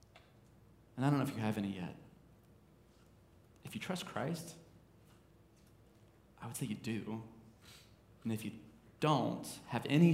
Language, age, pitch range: English, 30-49, 110-140 Hz